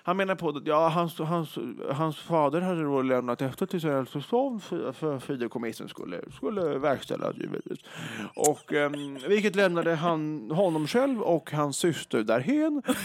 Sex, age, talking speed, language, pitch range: male, 30-49, 145 wpm, English, 140-225 Hz